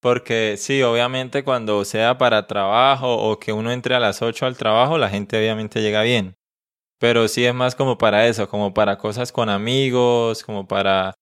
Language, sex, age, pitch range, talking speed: Spanish, male, 20-39, 110-130 Hz, 185 wpm